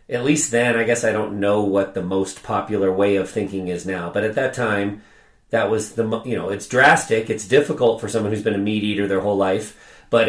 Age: 40-59